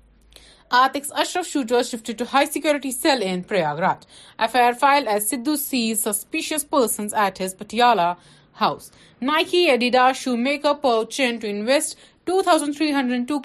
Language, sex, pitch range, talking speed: Urdu, female, 205-275 Hz, 120 wpm